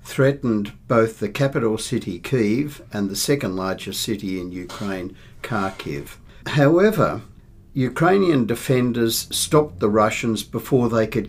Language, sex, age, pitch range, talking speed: English, male, 60-79, 105-125 Hz, 120 wpm